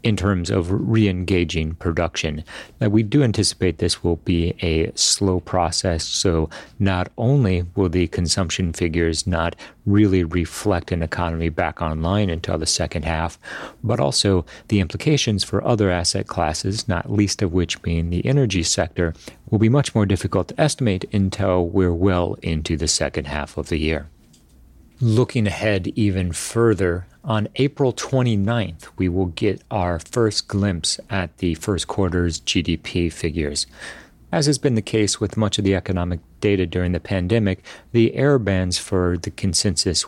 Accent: American